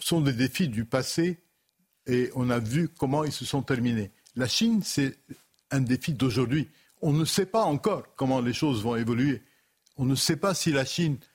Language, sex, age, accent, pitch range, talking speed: French, male, 60-79, French, 125-160 Hz, 195 wpm